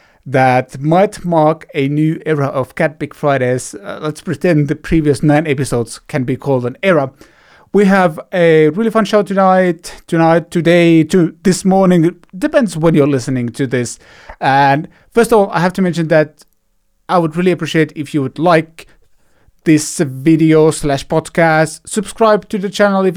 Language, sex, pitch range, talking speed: English, male, 140-185 Hz, 170 wpm